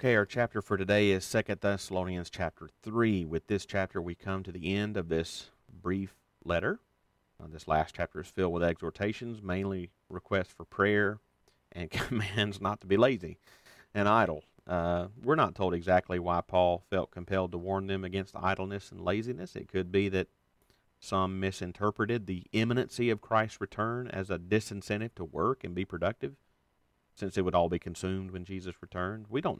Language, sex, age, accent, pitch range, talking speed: English, male, 40-59, American, 90-105 Hz, 175 wpm